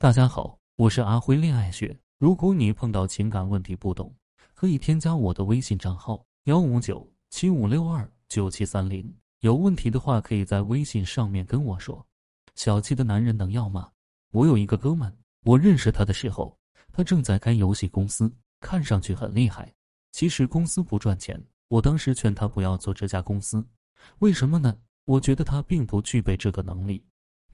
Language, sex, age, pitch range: Chinese, male, 20-39, 100-140 Hz